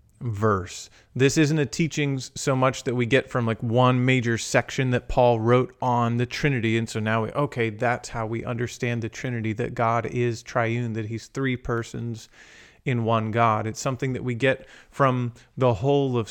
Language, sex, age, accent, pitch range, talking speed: English, male, 30-49, American, 115-140 Hz, 190 wpm